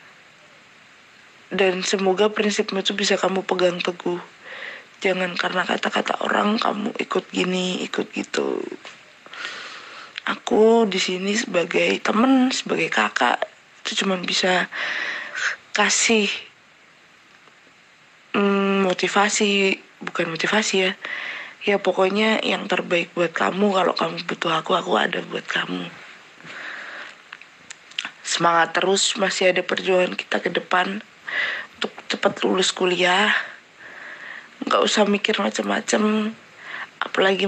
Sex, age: female, 20-39